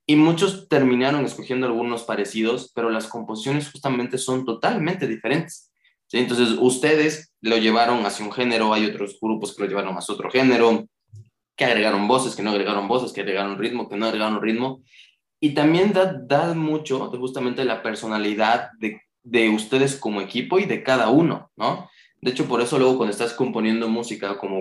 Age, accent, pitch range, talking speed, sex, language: 20-39, Mexican, 105-125 Hz, 175 wpm, male, Spanish